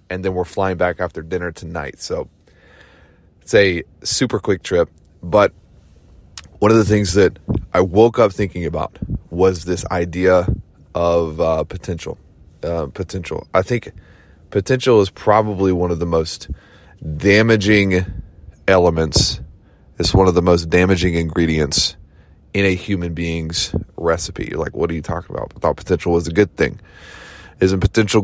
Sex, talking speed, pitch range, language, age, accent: male, 150 wpm, 85-100 Hz, English, 20-39, American